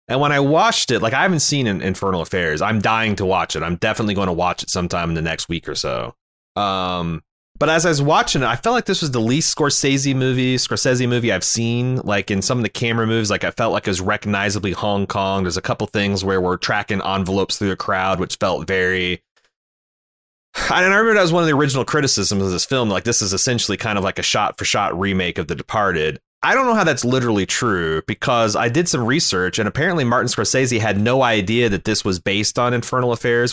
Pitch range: 95-130 Hz